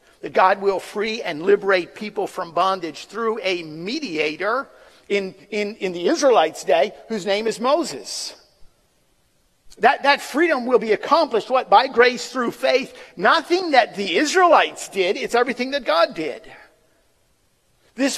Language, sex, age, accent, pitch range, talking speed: English, male, 50-69, American, 205-290 Hz, 140 wpm